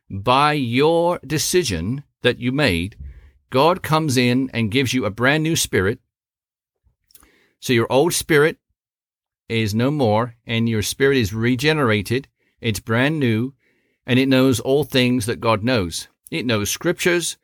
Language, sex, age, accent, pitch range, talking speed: English, male, 50-69, American, 110-140 Hz, 145 wpm